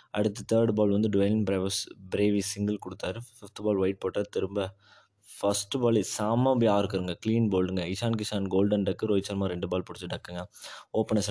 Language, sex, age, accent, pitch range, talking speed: Tamil, male, 20-39, native, 95-115 Hz, 165 wpm